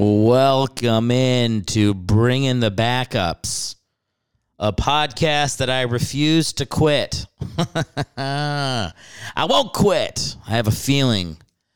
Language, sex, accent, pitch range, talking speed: English, male, American, 95-125 Hz, 105 wpm